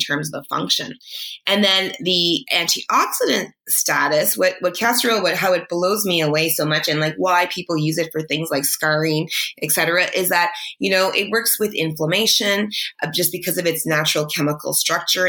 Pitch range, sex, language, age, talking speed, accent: 160-195 Hz, female, English, 20-39, 185 wpm, American